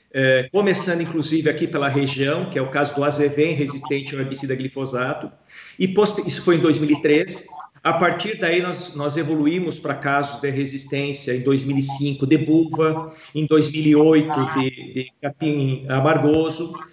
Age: 50-69